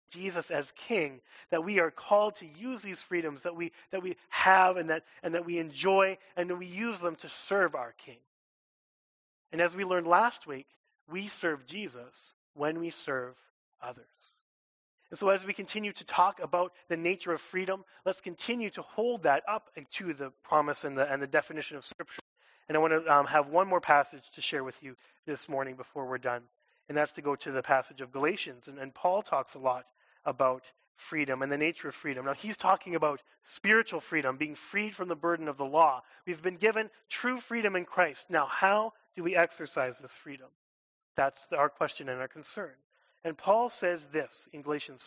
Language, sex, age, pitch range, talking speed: English, male, 30-49, 140-185 Hz, 200 wpm